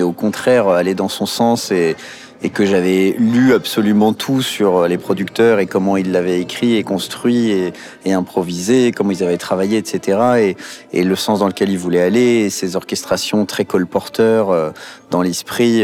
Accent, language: French, French